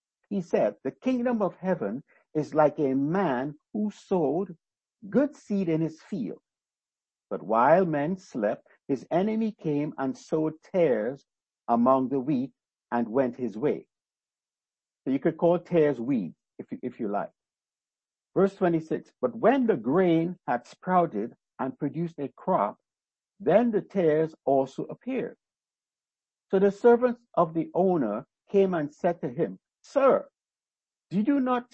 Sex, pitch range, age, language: male, 150-220 Hz, 60-79, English